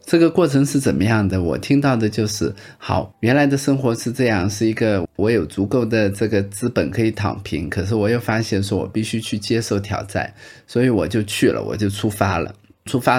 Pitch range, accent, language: 105-140 Hz, native, Chinese